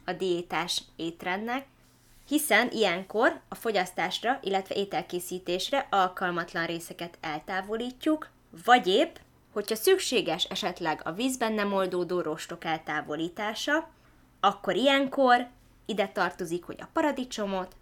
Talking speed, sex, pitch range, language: 100 wpm, female, 175-235 Hz, Hungarian